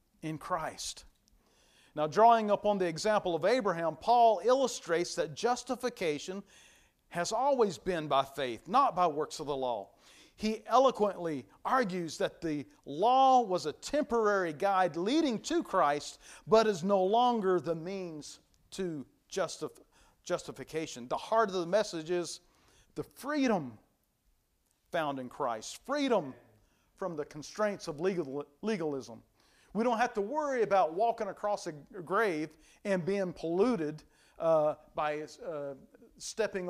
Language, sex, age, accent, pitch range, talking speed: English, male, 40-59, American, 155-215 Hz, 130 wpm